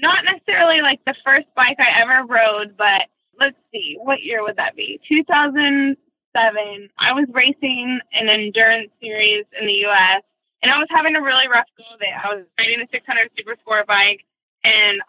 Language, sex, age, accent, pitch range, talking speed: English, female, 20-39, American, 210-255 Hz, 175 wpm